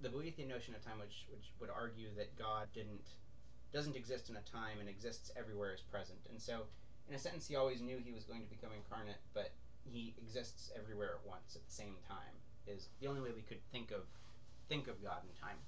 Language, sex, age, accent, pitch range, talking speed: English, male, 30-49, American, 115-140 Hz, 225 wpm